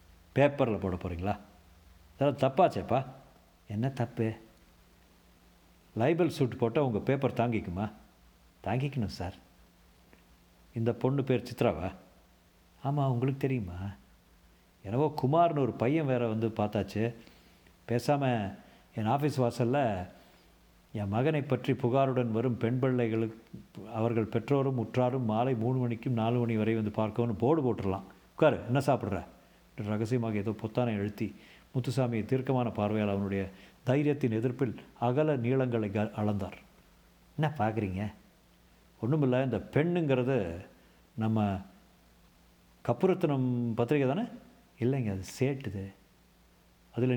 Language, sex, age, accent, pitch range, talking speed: Tamil, male, 50-69, native, 100-130 Hz, 105 wpm